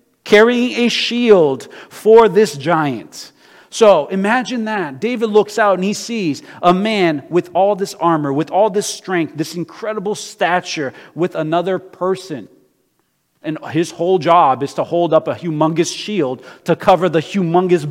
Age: 40-59